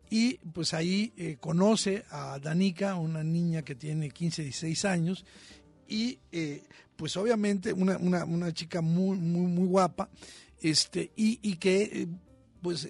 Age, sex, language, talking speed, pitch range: 50-69, male, Spanish, 155 wpm, 175-215 Hz